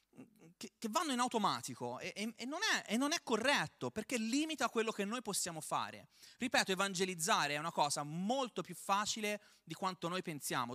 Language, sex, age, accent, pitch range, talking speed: Italian, male, 30-49, native, 145-225 Hz, 155 wpm